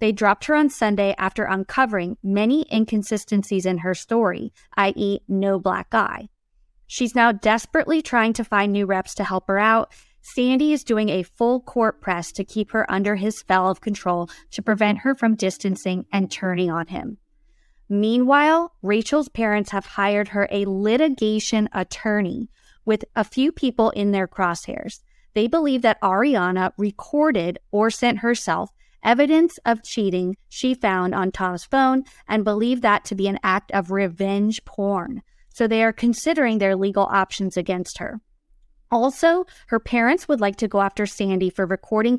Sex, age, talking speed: female, 20-39, 160 wpm